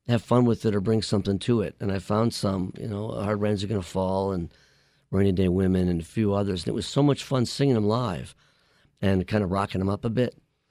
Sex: male